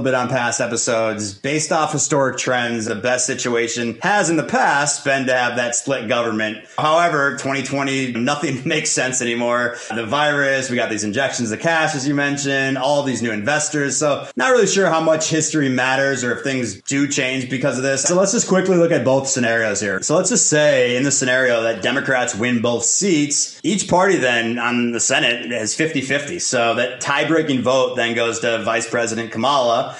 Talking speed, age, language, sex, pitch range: 195 wpm, 30-49, English, male, 120-145 Hz